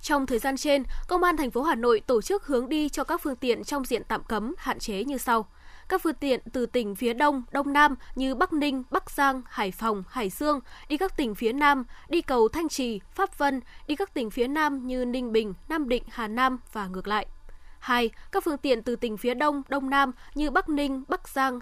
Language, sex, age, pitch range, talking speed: Vietnamese, female, 10-29, 230-295 Hz, 235 wpm